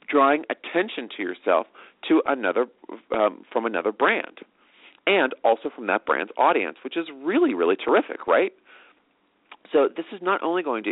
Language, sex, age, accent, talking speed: English, male, 40-59, American, 160 wpm